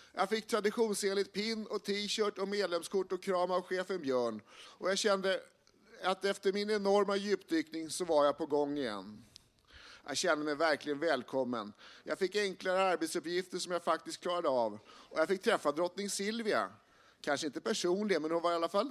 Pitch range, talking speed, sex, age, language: 155-195 Hz, 180 wpm, male, 50-69, Swedish